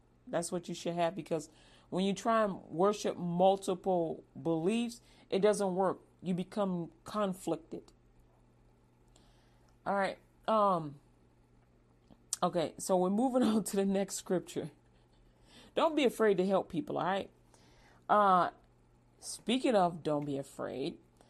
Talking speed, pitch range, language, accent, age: 125 wpm, 165-210 Hz, English, American, 40-59